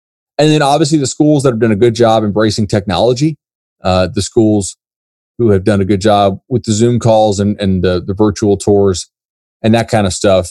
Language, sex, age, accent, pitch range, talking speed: English, male, 30-49, American, 100-130 Hz, 210 wpm